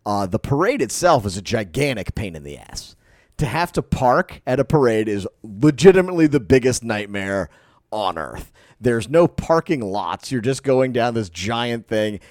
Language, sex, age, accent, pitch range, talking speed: English, male, 30-49, American, 110-150 Hz, 175 wpm